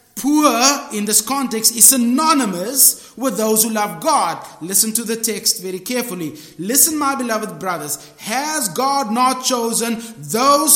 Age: 30-49